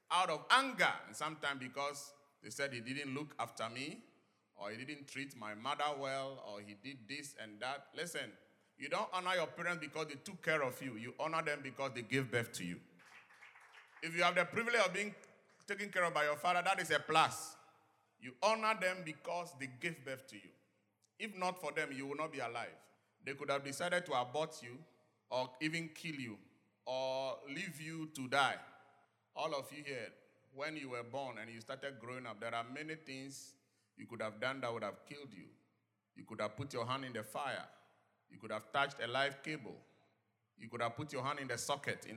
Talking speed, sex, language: 215 wpm, male, English